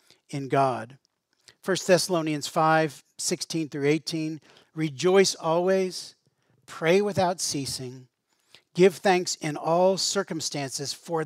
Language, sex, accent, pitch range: English, male, American, 135-170 Hz